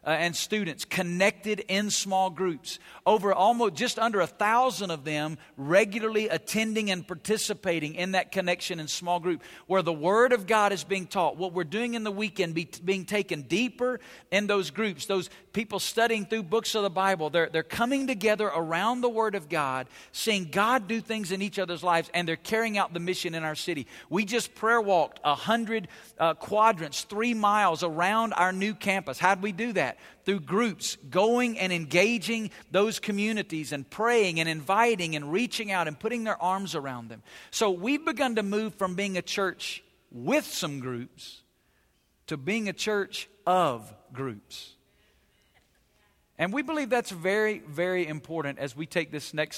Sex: male